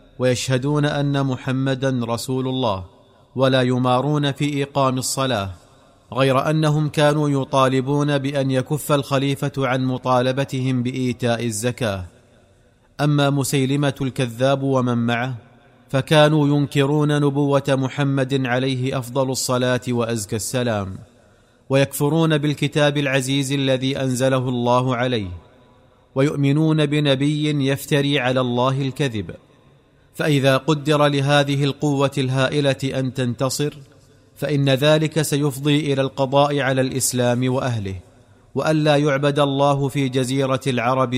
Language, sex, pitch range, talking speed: Arabic, male, 125-145 Hz, 100 wpm